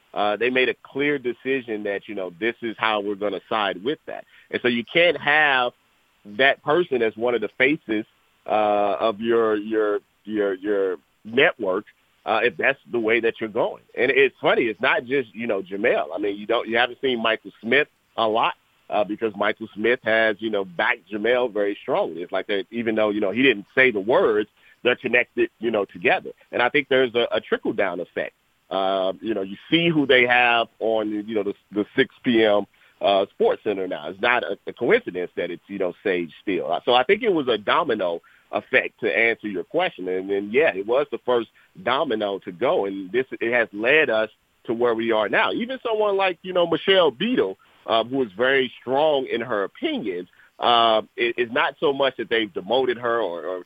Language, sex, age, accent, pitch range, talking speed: English, male, 40-59, American, 105-135 Hz, 215 wpm